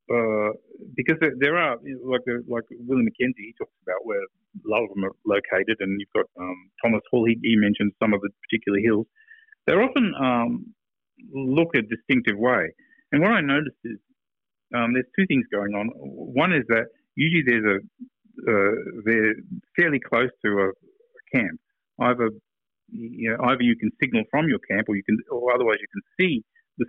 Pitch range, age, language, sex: 110-170 Hz, 50-69, English, male